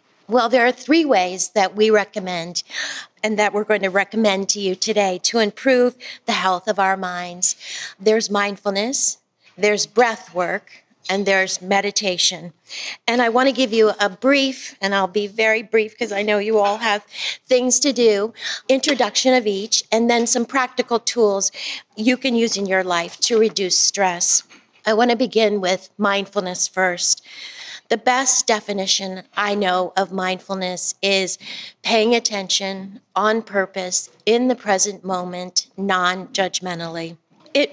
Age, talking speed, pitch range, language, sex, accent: 40-59, 155 wpm, 190-240 Hz, English, female, American